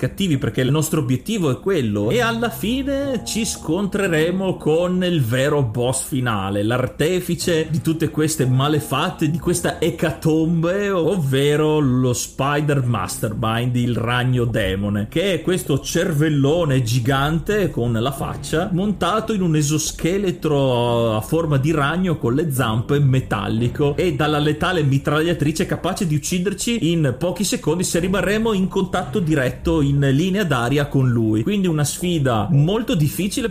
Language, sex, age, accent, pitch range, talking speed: Italian, male, 30-49, native, 135-175 Hz, 135 wpm